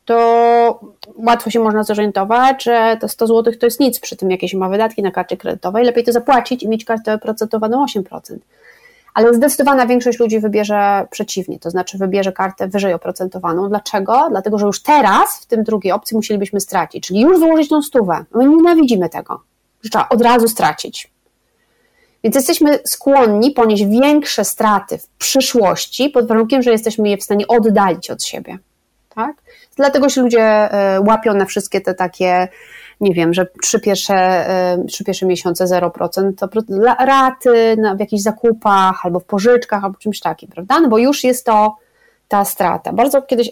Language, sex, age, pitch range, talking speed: Polish, female, 30-49, 195-245 Hz, 165 wpm